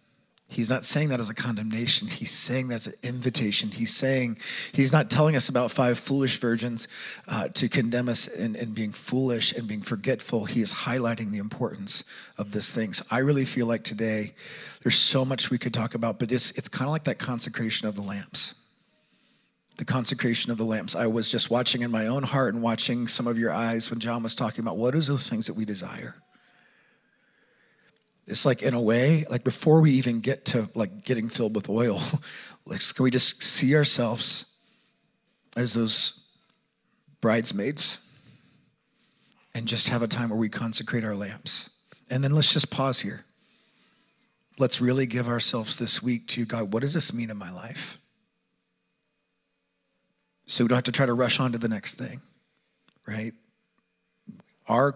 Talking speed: 180 wpm